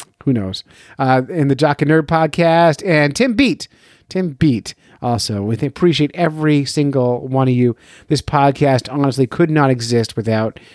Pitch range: 120-175 Hz